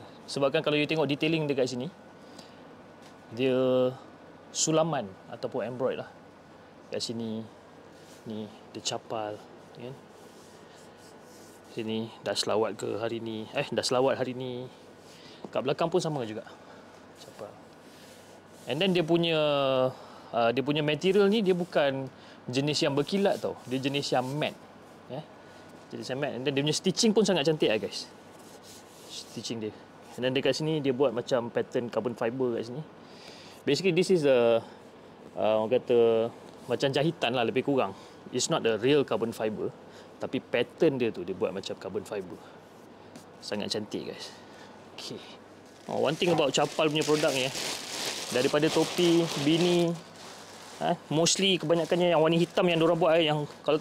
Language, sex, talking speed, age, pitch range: Malay, male, 150 wpm, 20-39, 125-170 Hz